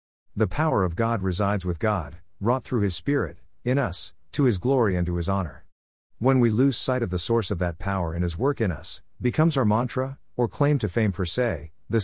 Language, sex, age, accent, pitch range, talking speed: English, male, 50-69, American, 90-120 Hz, 225 wpm